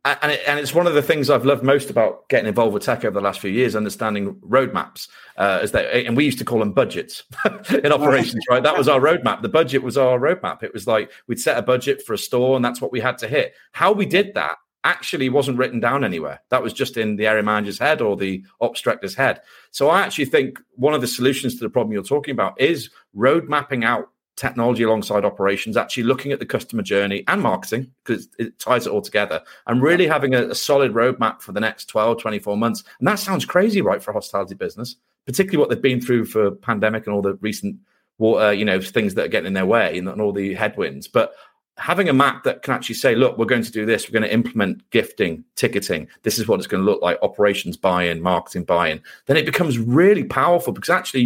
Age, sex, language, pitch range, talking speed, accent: 40-59, male, English, 105-135 Hz, 240 wpm, British